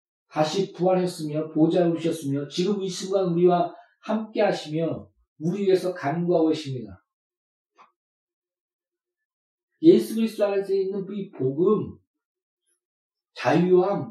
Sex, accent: male, native